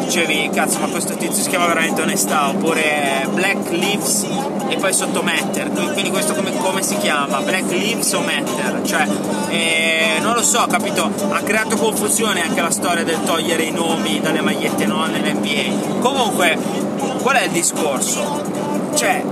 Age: 30-49